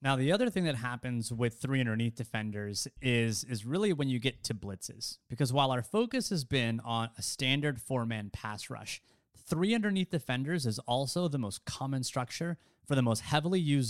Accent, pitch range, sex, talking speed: American, 115-150 Hz, male, 190 wpm